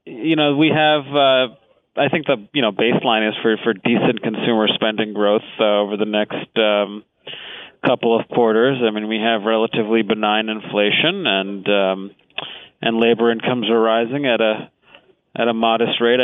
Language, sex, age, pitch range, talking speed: English, male, 30-49, 110-135 Hz, 170 wpm